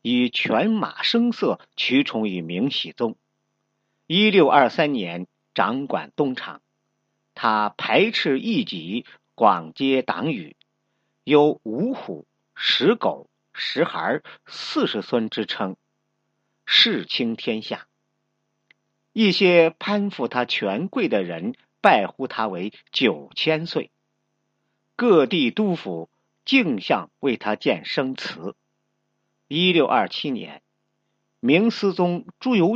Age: 50-69